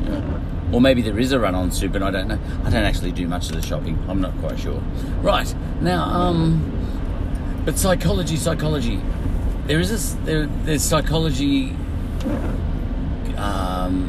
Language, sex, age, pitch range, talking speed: English, male, 50-69, 85-115 Hz, 155 wpm